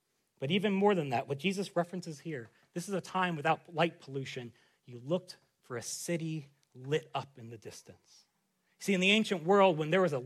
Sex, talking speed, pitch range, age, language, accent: male, 205 wpm, 140-195 Hz, 30-49, English, American